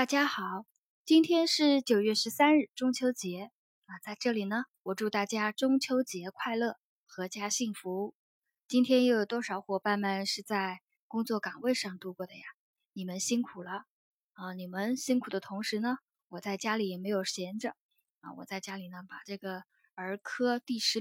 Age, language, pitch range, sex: 20-39, Chinese, 195-255 Hz, female